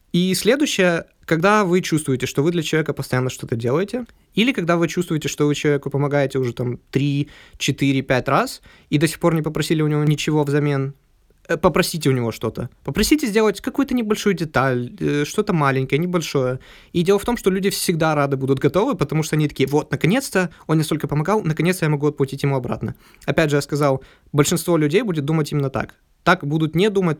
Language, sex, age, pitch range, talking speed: Russian, male, 20-39, 140-180 Hz, 195 wpm